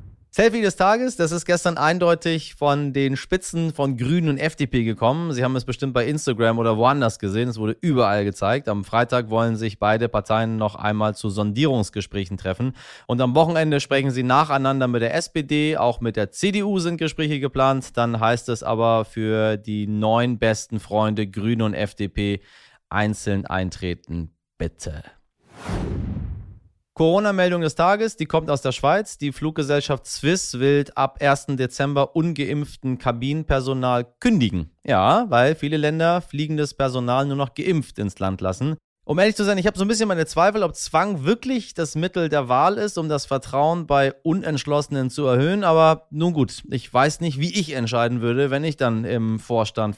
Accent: German